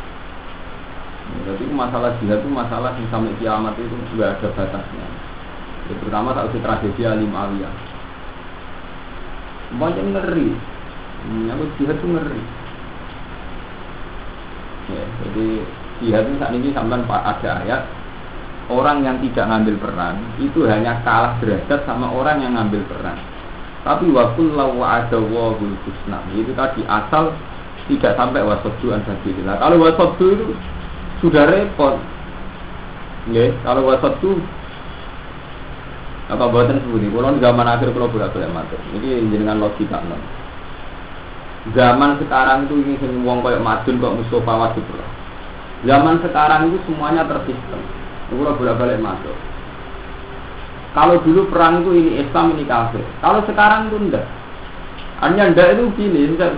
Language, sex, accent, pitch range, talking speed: Indonesian, male, native, 100-140 Hz, 130 wpm